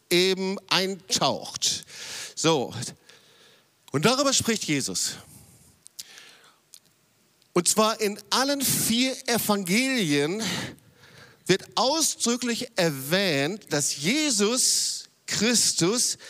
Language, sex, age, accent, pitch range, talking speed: German, male, 50-69, German, 150-225 Hz, 70 wpm